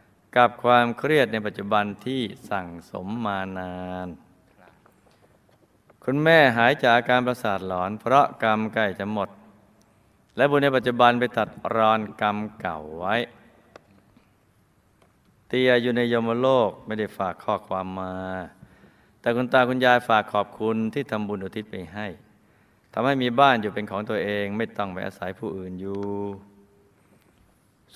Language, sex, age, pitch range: Thai, male, 20-39, 95-115 Hz